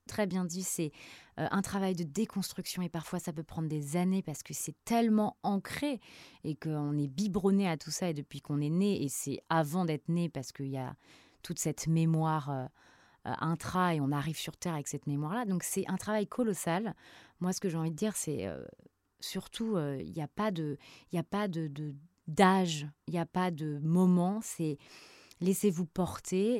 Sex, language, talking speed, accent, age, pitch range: female, French, 205 wpm, French, 30-49, 155-195 Hz